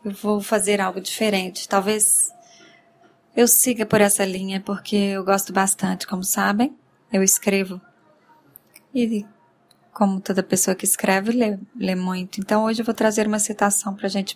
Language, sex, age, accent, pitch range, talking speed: Portuguese, female, 10-29, Brazilian, 190-225 Hz, 160 wpm